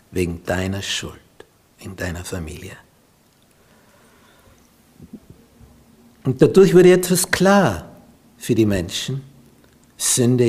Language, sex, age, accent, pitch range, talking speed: German, male, 60-79, Austrian, 115-160 Hz, 85 wpm